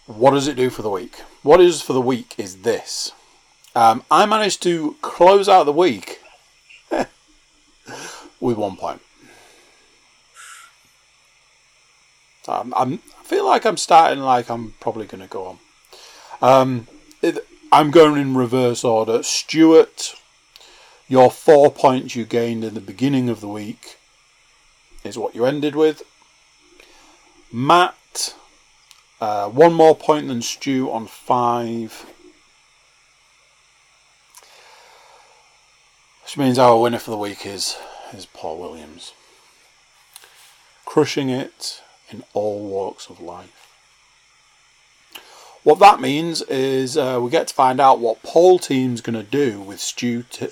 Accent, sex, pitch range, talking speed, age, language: British, male, 120-180 Hz, 125 wpm, 40-59, English